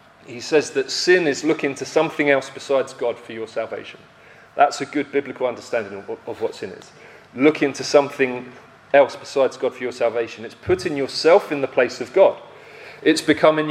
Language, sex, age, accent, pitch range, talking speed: English, male, 30-49, British, 125-150 Hz, 185 wpm